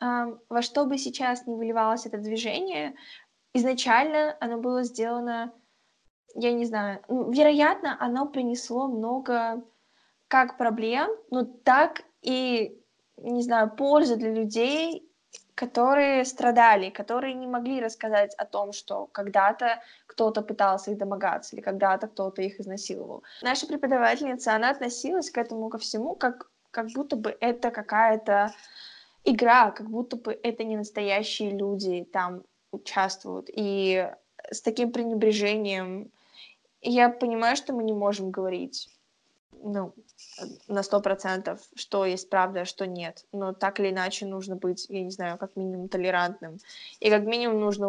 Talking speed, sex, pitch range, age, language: 135 wpm, female, 200-245 Hz, 10-29, Russian